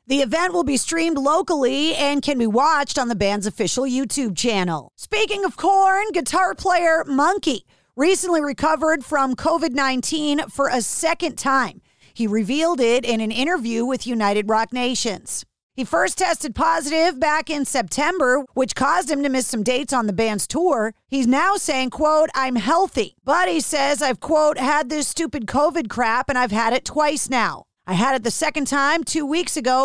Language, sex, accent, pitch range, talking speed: English, female, American, 245-315 Hz, 180 wpm